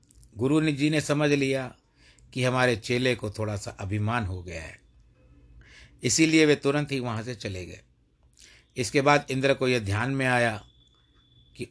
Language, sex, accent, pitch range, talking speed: Hindi, male, native, 110-135 Hz, 165 wpm